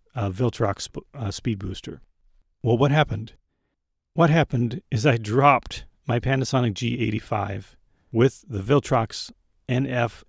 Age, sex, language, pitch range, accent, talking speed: 40-59, male, English, 105-130 Hz, American, 115 wpm